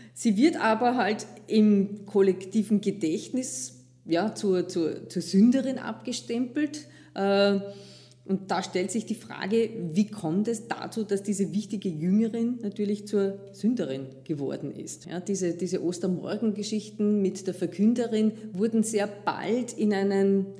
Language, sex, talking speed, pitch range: German, female, 130 wpm, 185-220 Hz